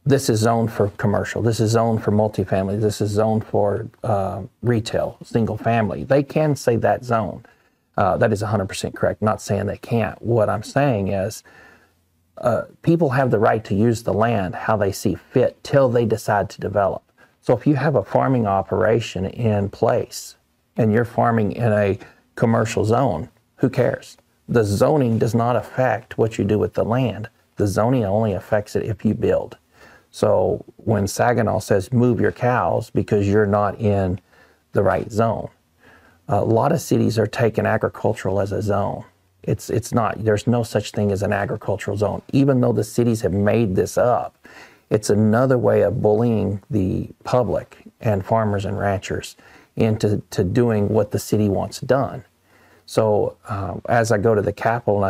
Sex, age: male, 40-59